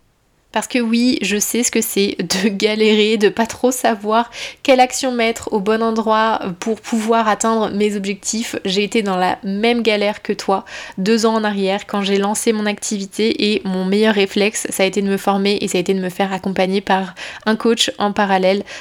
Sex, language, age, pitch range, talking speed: female, French, 20-39, 200-230 Hz, 205 wpm